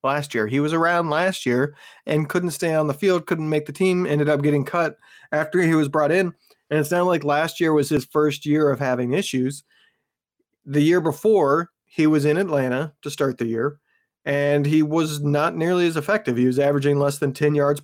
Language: English